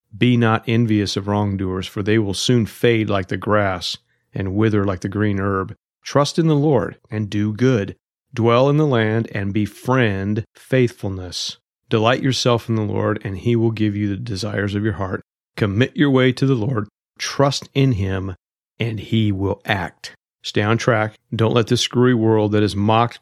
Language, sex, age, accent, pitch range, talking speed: English, male, 40-59, American, 95-115 Hz, 185 wpm